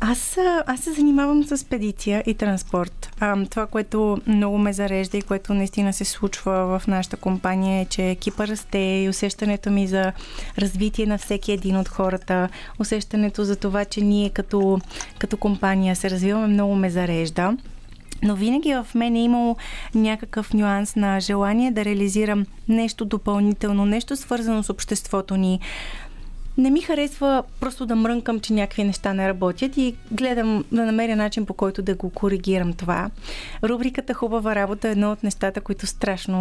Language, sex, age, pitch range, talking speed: Bulgarian, female, 20-39, 195-225 Hz, 165 wpm